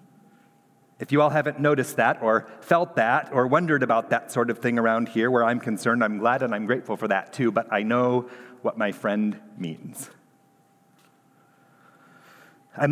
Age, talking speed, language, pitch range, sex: 40-59, 170 wpm, English, 125-150 Hz, male